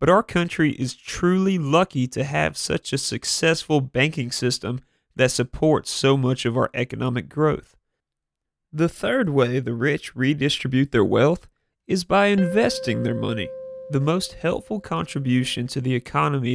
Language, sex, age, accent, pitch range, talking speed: English, male, 30-49, American, 130-165 Hz, 150 wpm